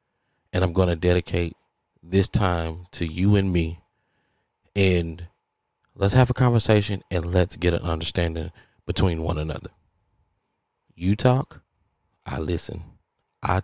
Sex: male